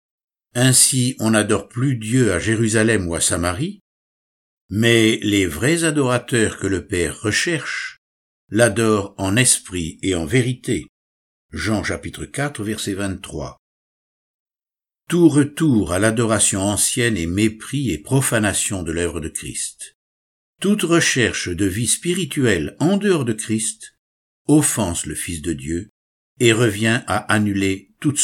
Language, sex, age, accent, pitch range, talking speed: French, male, 60-79, French, 85-120 Hz, 130 wpm